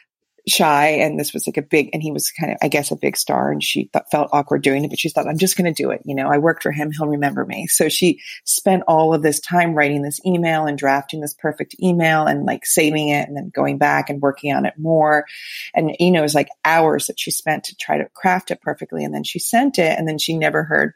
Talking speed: 270 wpm